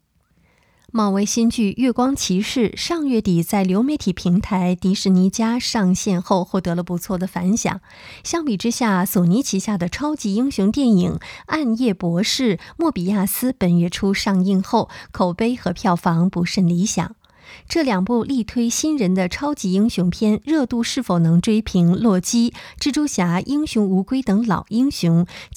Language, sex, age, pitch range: Chinese, female, 20-39, 185-235 Hz